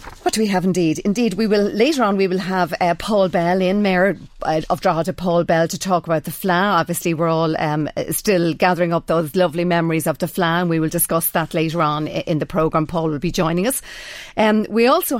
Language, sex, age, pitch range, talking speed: English, female, 40-59, 165-195 Hz, 230 wpm